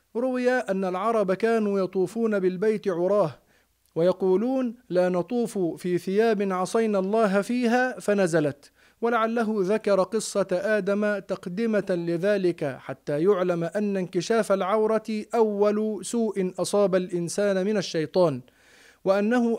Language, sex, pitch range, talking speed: Arabic, male, 175-225 Hz, 105 wpm